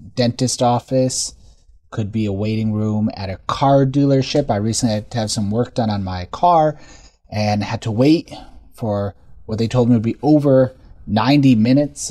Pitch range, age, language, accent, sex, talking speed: 105-140 Hz, 30-49, English, American, male, 180 wpm